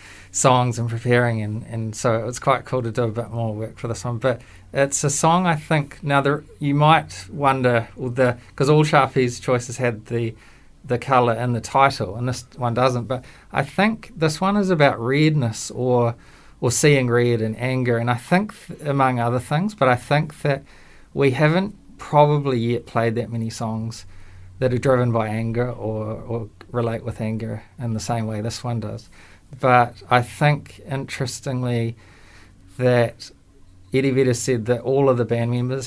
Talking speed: 180 wpm